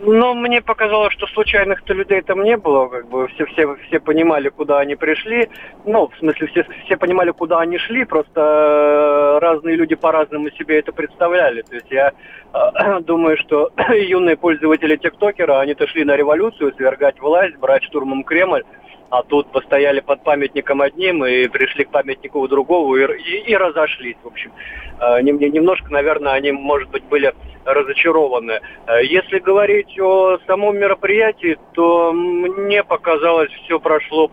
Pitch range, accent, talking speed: 140-190 Hz, native, 140 wpm